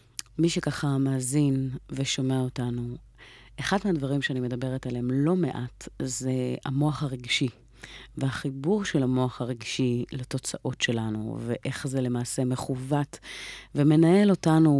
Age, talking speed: 30-49, 110 wpm